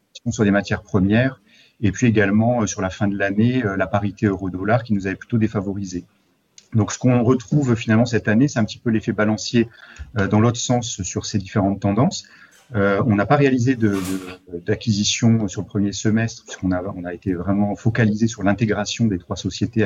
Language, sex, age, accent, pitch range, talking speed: French, male, 40-59, French, 100-115 Hz, 200 wpm